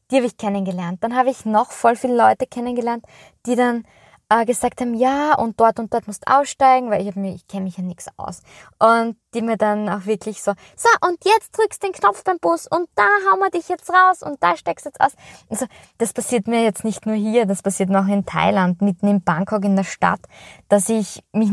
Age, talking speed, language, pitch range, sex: 20-39, 240 wpm, German, 200-250 Hz, female